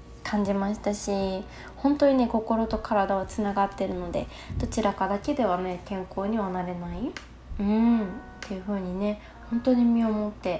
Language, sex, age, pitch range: Japanese, female, 20-39, 195-235 Hz